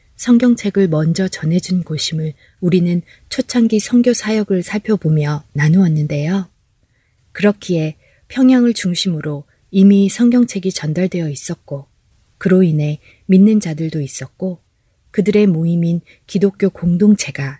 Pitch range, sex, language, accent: 150-205 Hz, female, Korean, native